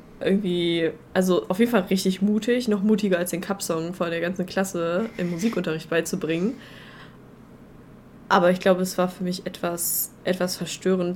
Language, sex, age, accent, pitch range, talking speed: German, female, 20-39, German, 180-210 Hz, 155 wpm